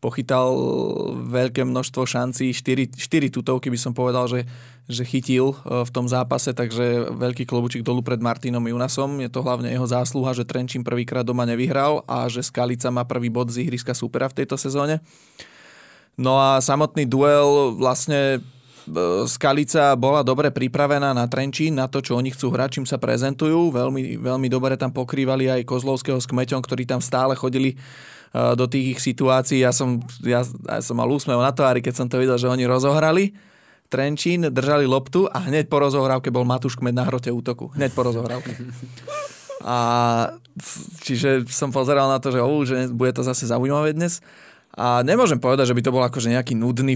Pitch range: 125-135 Hz